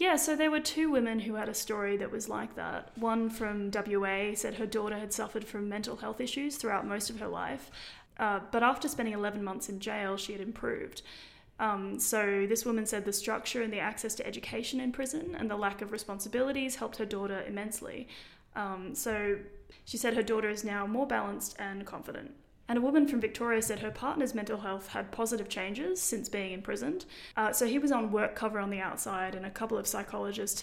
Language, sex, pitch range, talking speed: English, female, 205-230 Hz, 210 wpm